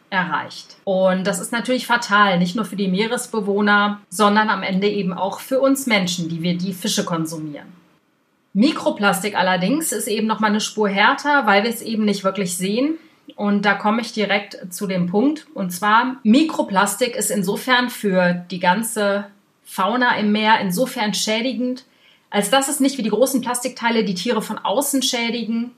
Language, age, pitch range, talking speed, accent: German, 30-49, 190-235 Hz, 170 wpm, German